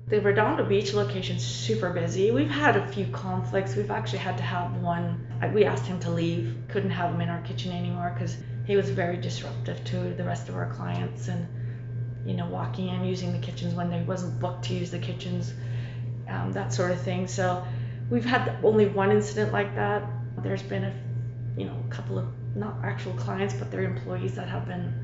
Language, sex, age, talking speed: English, female, 30-49, 205 wpm